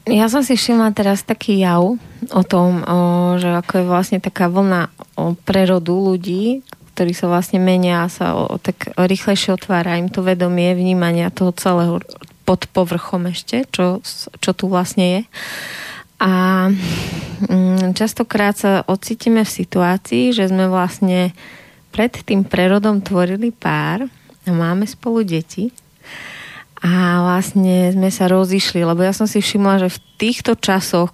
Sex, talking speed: female, 145 wpm